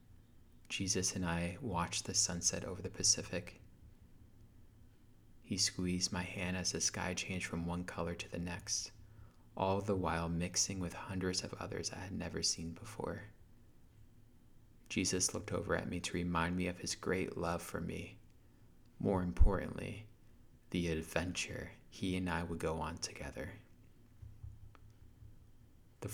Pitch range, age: 85-105 Hz, 30-49